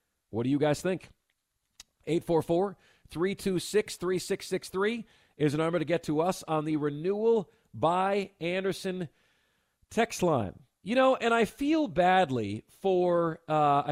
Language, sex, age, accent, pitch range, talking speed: English, male, 40-59, American, 145-225 Hz, 120 wpm